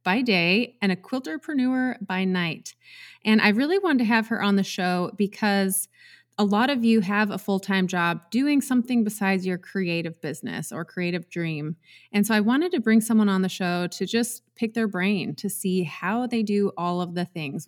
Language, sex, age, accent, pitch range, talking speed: English, female, 30-49, American, 180-230 Hz, 200 wpm